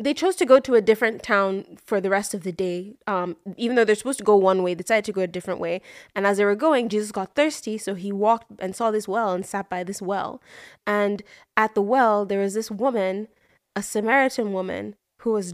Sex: female